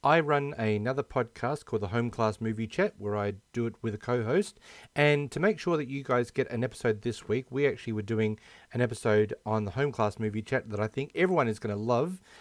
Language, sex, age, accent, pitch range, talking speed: English, male, 40-59, Australian, 110-140 Hz, 240 wpm